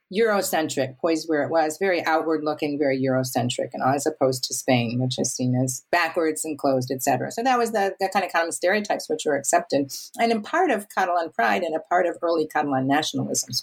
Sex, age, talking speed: female, 50-69, 220 wpm